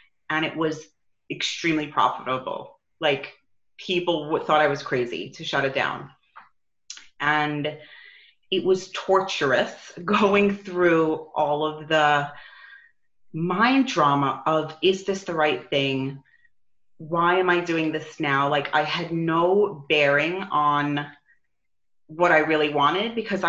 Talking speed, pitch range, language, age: 125 wpm, 150-180 Hz, English, 30-49